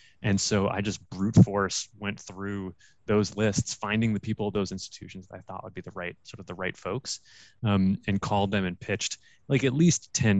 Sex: male